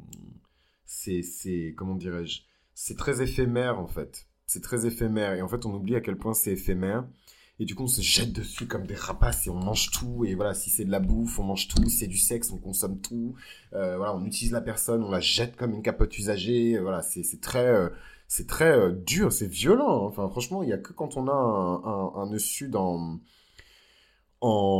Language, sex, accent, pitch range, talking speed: French, male, French, 90-115 Hz, 215 wpm